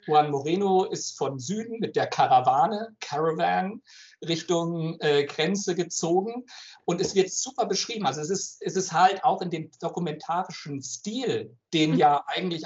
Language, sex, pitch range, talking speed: German, male, 145-180 Hz, 150 wpm